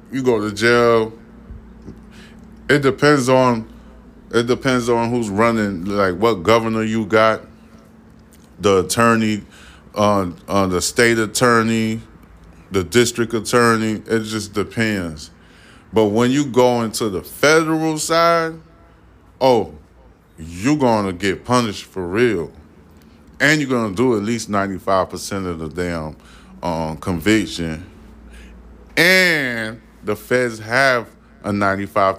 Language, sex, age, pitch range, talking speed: English, male, 20-39, 90-115 Hz, 125 wpm